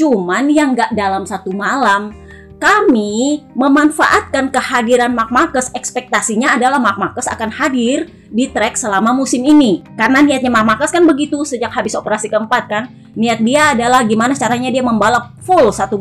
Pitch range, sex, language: 235-320 Hz, female, Indonesian